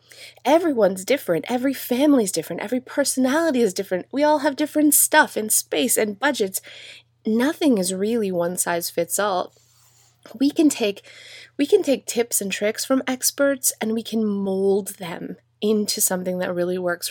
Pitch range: 180-255 Hz